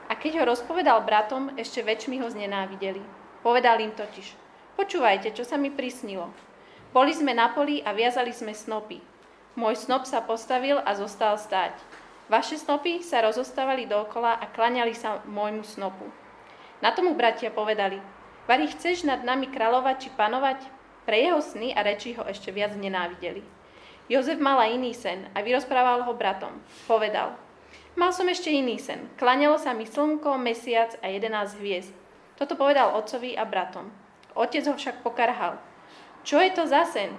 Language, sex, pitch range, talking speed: Slovak, female, 215-270 Hz, 160 wpm